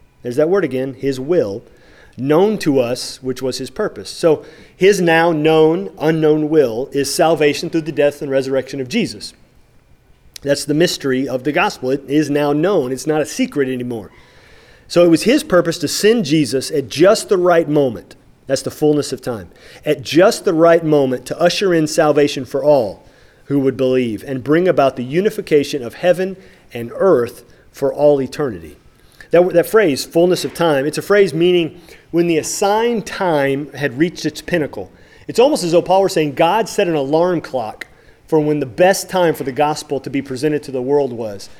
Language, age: English, 40-59